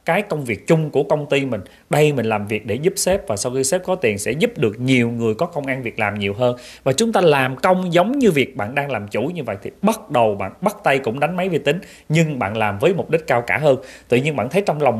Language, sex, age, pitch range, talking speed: Vietnamese, male, 20-39, 120-175 Hz, 290 wpm